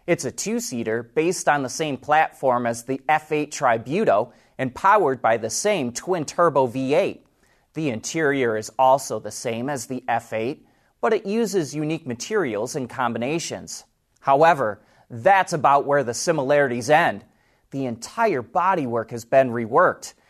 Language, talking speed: English, 140 wpm